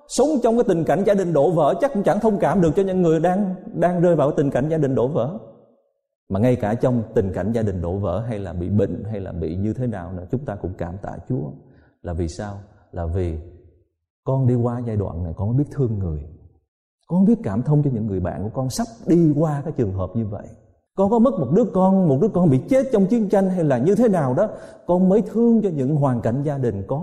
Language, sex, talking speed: Vietnamese, male, 260 wpm